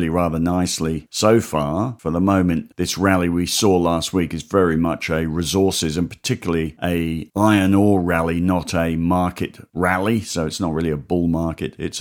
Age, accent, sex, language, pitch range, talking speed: 50-69, British, male, English, 85-100 Hz, 180 wpm